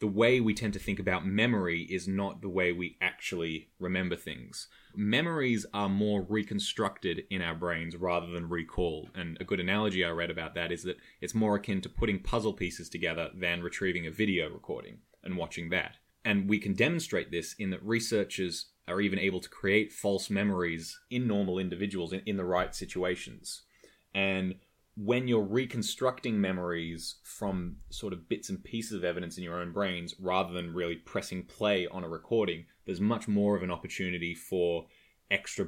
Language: English